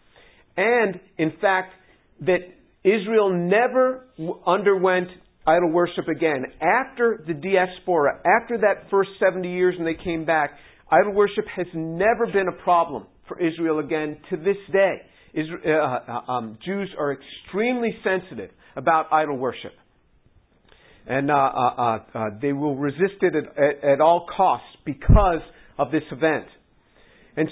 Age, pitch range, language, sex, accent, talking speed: 50-69, 160-195 Hz, English, male, American, 135 wpm